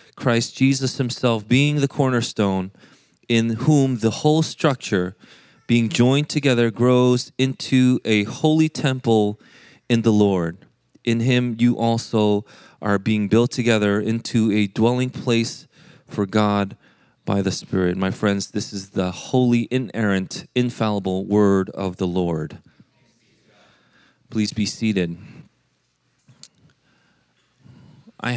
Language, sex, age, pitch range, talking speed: English, male, 30-49, 105-130 Hz, 115 wpm